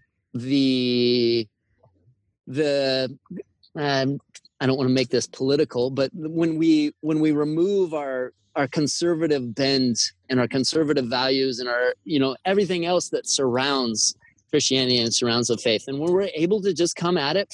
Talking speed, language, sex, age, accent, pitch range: 155 wpm, English, male, 30-49, American, 125-150 Hz